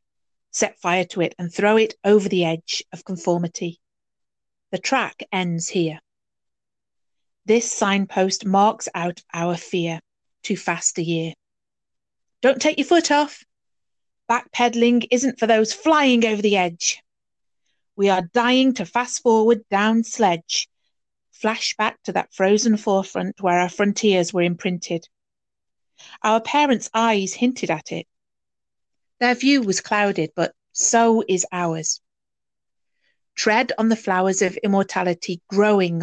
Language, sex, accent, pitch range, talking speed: English, female, British, 175-225 Hz, 130 wpm